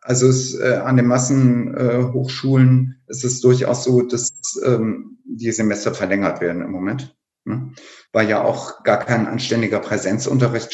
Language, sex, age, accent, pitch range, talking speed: German, male, 50-69, German, 115-130 Hz, 150 wpm